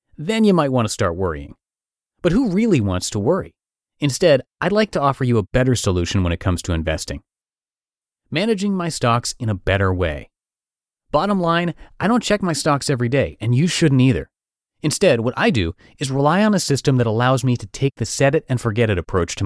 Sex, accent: male, American